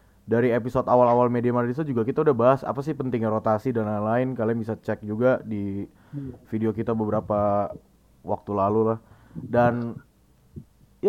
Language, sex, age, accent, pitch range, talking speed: Indonesian, male, 20-39, native, 110-135 Hz, 155 wpm